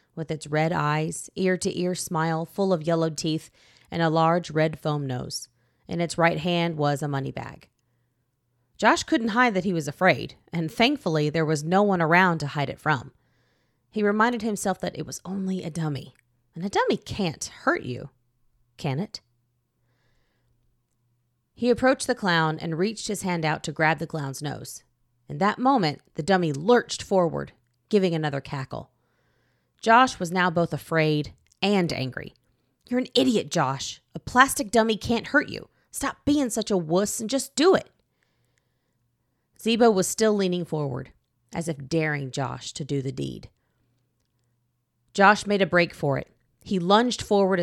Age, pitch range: 30-49, 125-195 Hz